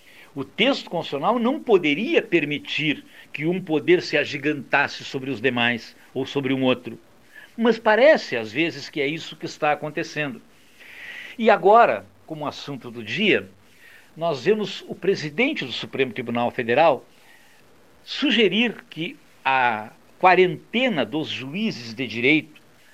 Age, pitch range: 60-79, 140-215 Hz